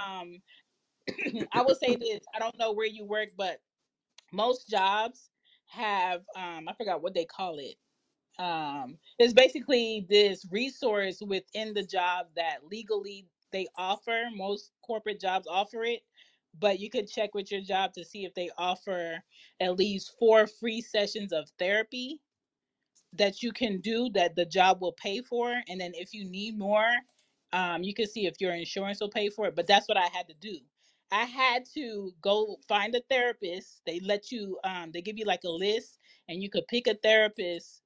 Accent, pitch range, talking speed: American, 190-230 Hz, 180 wpm